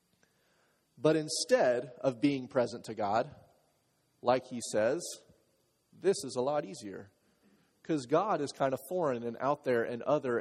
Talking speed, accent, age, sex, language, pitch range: 150 wpm, American, 30-49, male, English, 115-170 Hz